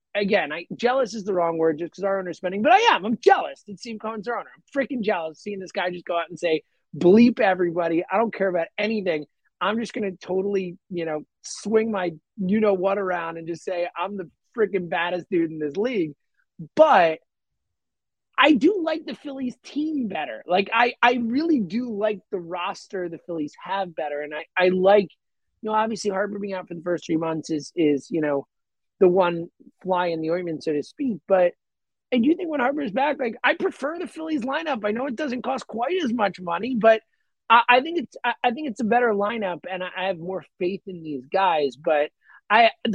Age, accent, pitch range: 30-49, American, 170-235 Hz